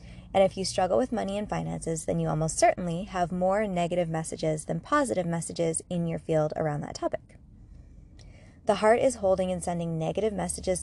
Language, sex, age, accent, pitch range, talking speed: English, female, 20-39, American, 165-200 Hz, 185 wpm